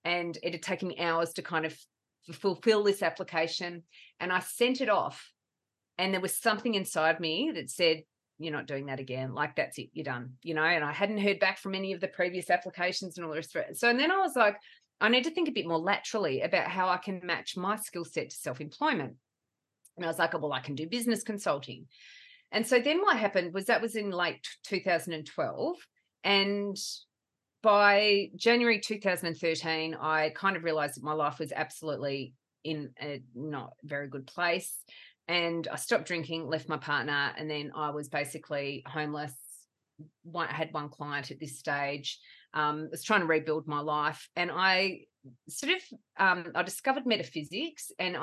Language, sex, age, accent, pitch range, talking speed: English, female, 30-49, Australian, 150-195 Hz, 195 wpm